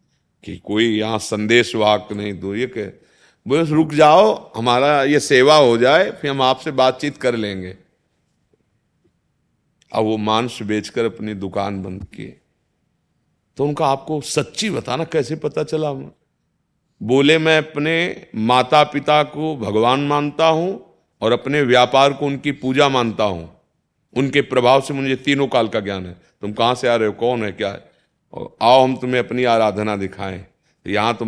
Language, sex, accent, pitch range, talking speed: Hindi, male, native, 105-140 Hz, 160 wpm